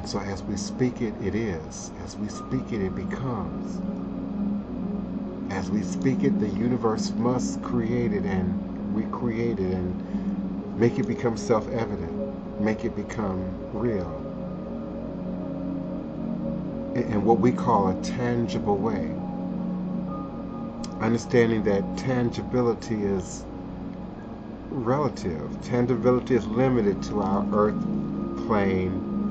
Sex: male